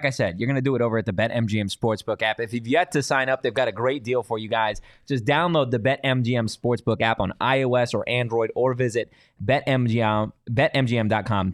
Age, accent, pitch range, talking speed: 20-39, American, 110-140 Hz, 210 wpm